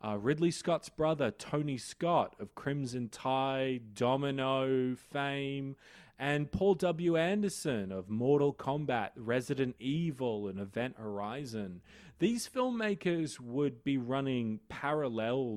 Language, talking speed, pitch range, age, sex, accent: English, 110 wpm, 115-160 Hz, 20-39, male, Australian